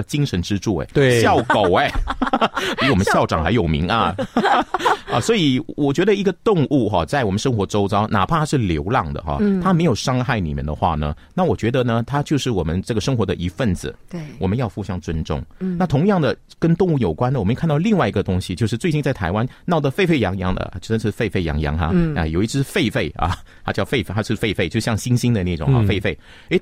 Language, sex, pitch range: Chinese, male, 95-135 Hz